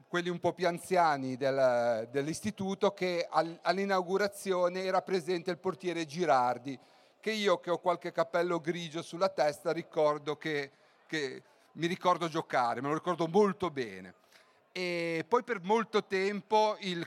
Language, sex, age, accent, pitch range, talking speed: Italian, male, 40-59, native, 155-190 Hz, 140 wpm